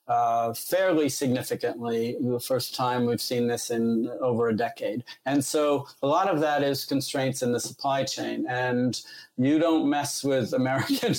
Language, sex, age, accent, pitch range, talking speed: English, male, 40-59, American, 125-145 Hz, 165 wpm